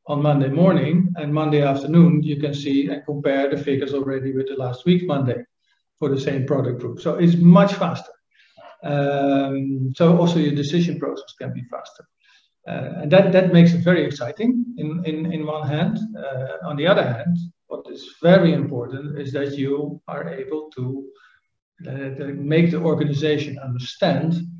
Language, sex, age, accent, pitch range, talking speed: English, male, 50-69, Dutch, 140-170 Hz, 170 wpm